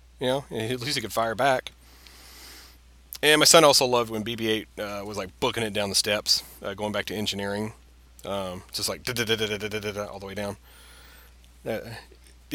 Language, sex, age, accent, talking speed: English, male, 30-49, American, 200 wpm